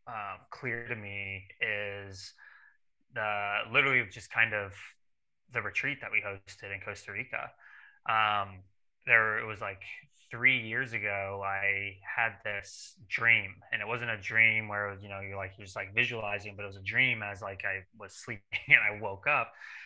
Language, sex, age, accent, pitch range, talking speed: English, male, 20-39, American, 100-115 Hz, 170 wpm